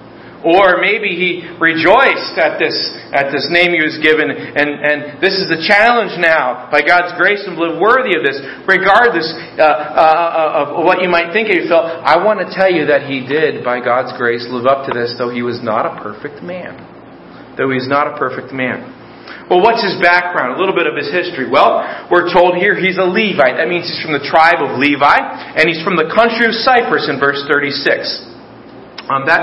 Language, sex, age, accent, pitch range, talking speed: English, male, 40-59, American, 145-175 Hz, 210 wpm